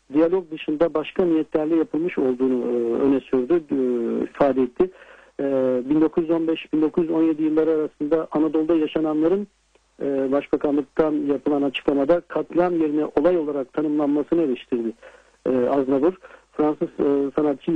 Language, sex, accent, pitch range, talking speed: Turkish, male, native, 145-175 Hz, 110 wpm